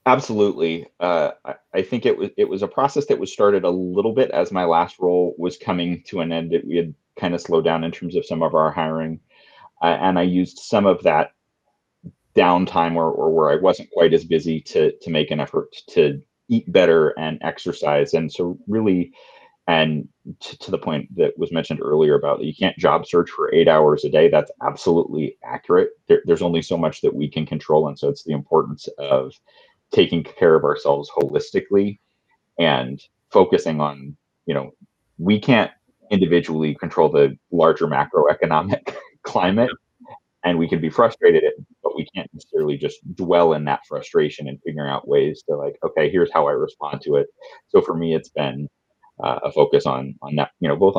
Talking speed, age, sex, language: 195 wpm, 30-49, male, English